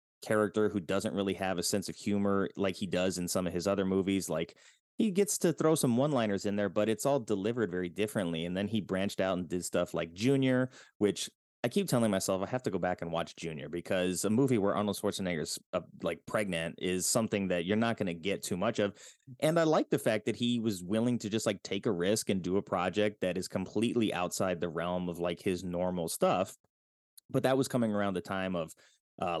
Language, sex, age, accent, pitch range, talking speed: English, male, 30-49, American, 90-110 Hz, 235 wpm